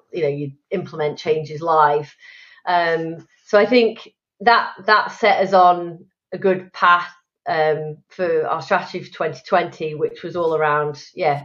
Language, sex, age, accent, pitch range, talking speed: German, female, 30-49, British, 155-185 Hz, 150 wpm